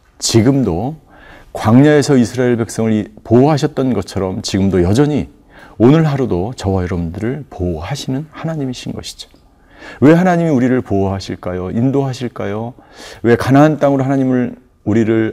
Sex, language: male, Korean